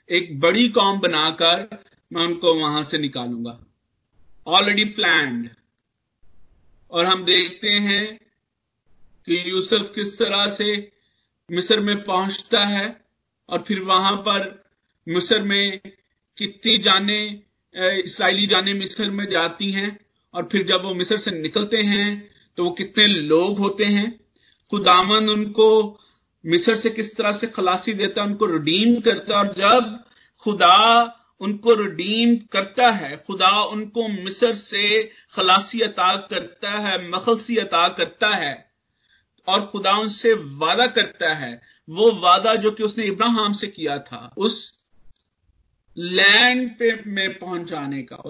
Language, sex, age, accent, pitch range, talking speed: Hindi, male, 50-69, native, 175-215 Hz, 130 wpm